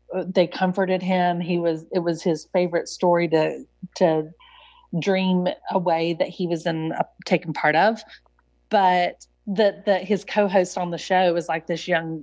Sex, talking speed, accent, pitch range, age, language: female, 170 wpm, American, 165-200 Hz, 30-49, English